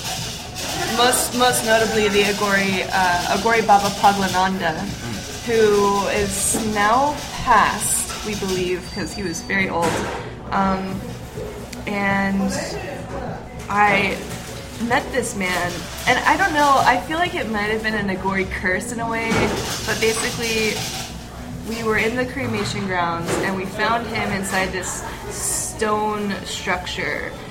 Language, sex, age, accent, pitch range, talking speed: English, female, 20-39, American, 185-215 Hz, 130 wpm